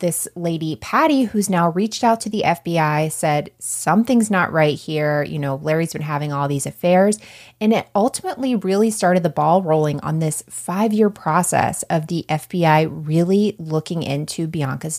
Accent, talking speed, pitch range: American, 170 wpm, 150-210 Hz